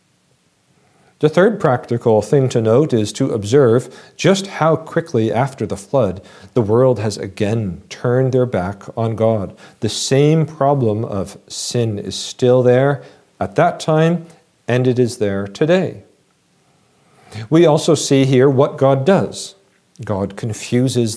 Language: English